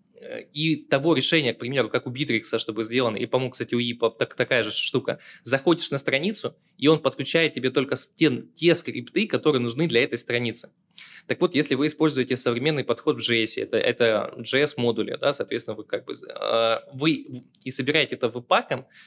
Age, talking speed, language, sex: 20-39, 185 wpm, Russian, male